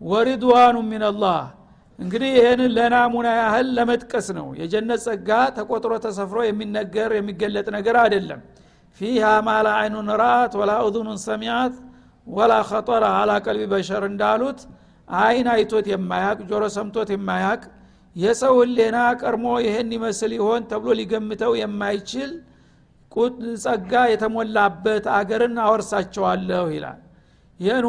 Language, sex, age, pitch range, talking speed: Amharic, male, 60-79, 210-240 Hz, 110 wpm